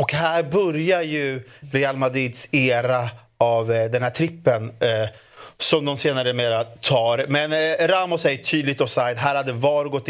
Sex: male